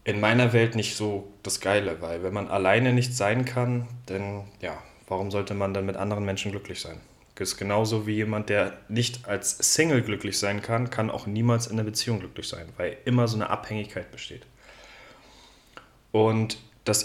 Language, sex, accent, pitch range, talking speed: German, male, German, 105-120 Hz, 185 wpm